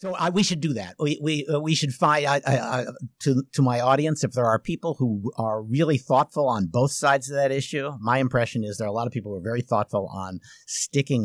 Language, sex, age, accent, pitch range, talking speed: English, male, 50-69, American, 105-140 Hz, 240 wpm